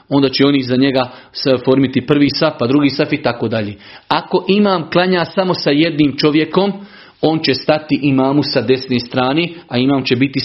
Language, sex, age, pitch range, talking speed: Croatian, male, 40-59, 135-165 Hz, 185 wpm